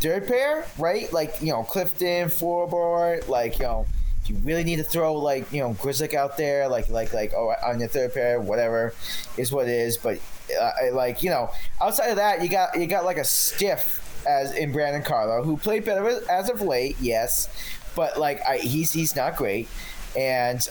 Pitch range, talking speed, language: 110-150 Hz, 205 wpm, English